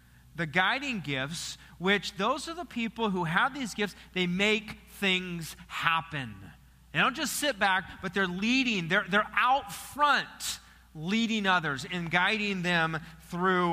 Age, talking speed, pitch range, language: 40-59, 150 wpm, 160-225 Hz, English